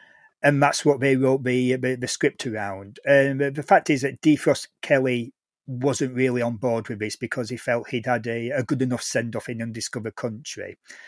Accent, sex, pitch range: British, male, 125-150 Hz